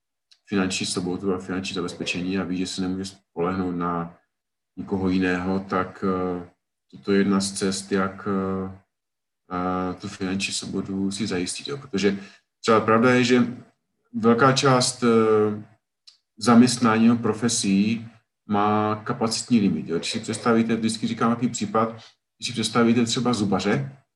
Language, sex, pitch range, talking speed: Czech, male, 95-115 Hz, 130 wpm